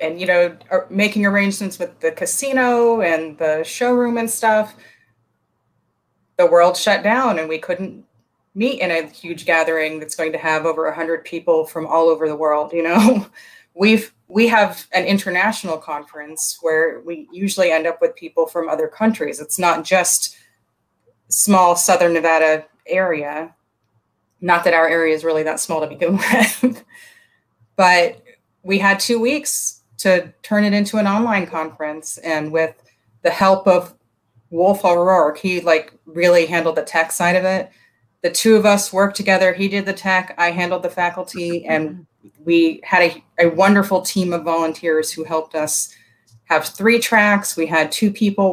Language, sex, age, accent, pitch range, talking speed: English, female, 30-49, American, 160-195 Hz, 165 wpm